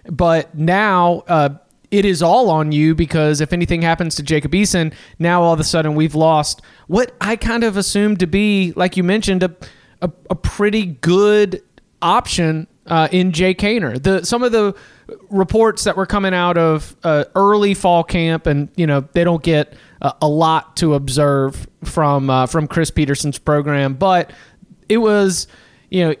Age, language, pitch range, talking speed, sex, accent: 30-49, English, 155-185 Hz, 180 wpm, male, American